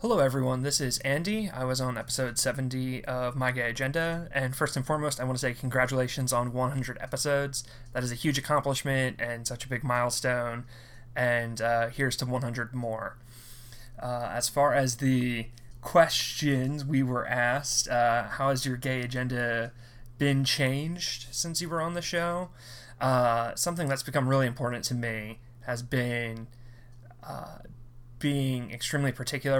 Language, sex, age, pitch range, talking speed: English, male, 20-39, 120-135 Hz, 160 wpm